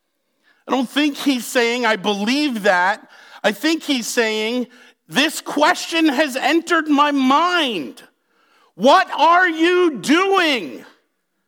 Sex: male